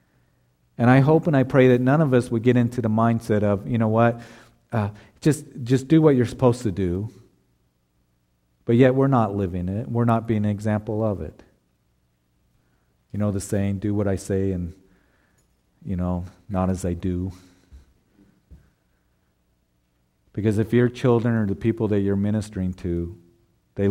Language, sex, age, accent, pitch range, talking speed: English, male, 40-59, American, 90-115 Hz, 170 wpm